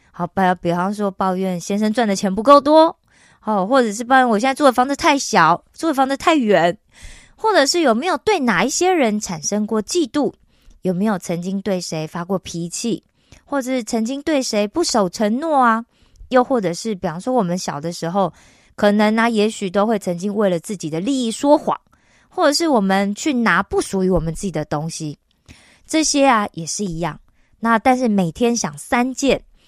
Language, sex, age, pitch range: Korean, female, 20-39, 185-260 Hz